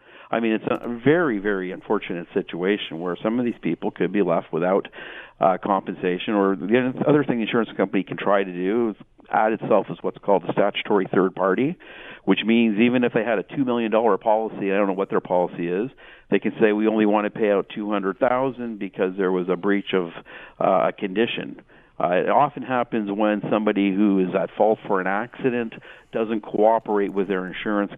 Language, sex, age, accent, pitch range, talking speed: English, male, 50-69, American, 90-110 Hz, 210 wpm